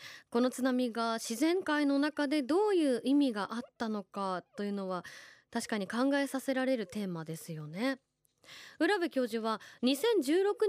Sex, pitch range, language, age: female, 220-290 Hz, Japanese, 20-39